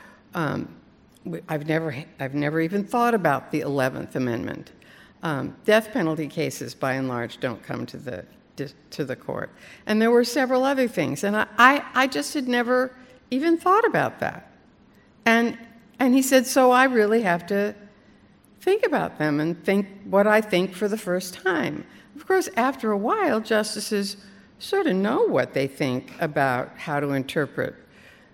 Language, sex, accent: English, female, American